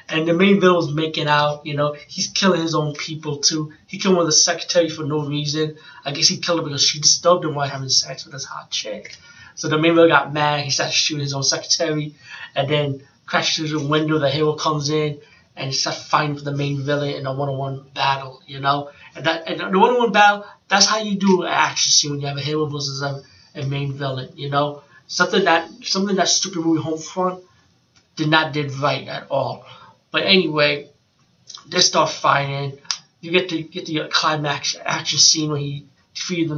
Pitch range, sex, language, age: 140-165 Hz, male, English, 20-39